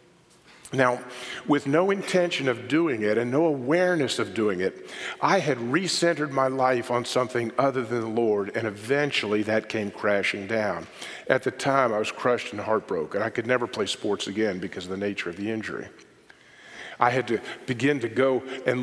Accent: American